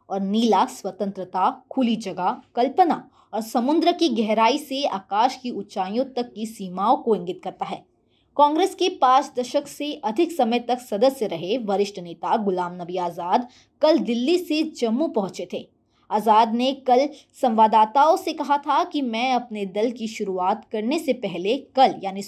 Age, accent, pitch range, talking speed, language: 20-39, native, 210-275 Hz, 160 wpm, Hindi